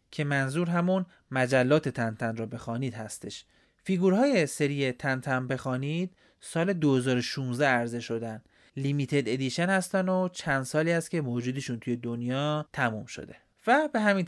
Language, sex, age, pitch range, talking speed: Persian, male, 30-49, 120-155 Hz, 145 wpm